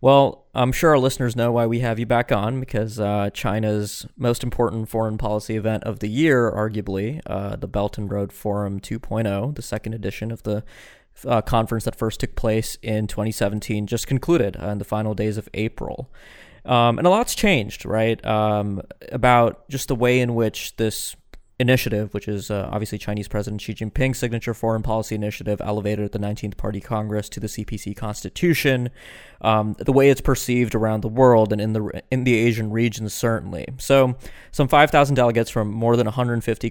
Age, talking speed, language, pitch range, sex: 20-39, 185 wpm, English, 105-120 Hz, male